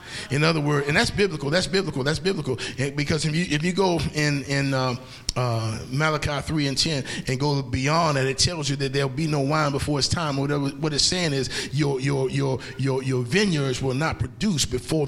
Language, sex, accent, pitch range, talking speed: English, male, American, 130-160 Hz, 215 wpm